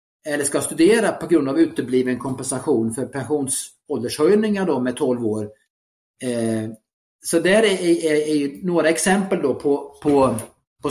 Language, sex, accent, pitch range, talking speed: Swedish, male, Norwegian, 125-165 Hz, 145 wpm